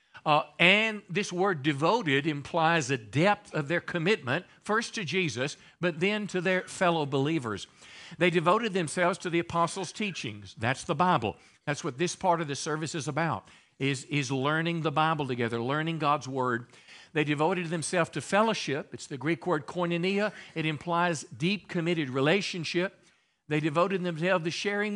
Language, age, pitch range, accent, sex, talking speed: English, 50-69, 145-185 Hz, American, male, 165 wpm